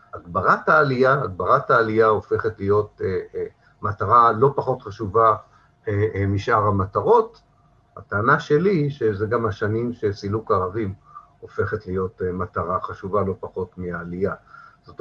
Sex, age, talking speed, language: male, 50-69, 110 wpm, Hebrew